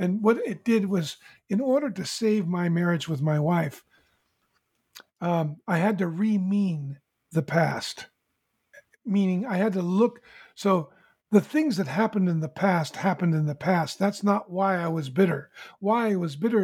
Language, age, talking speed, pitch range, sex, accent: English, 50-69, 175 wpm, 170-205 Hz, male, American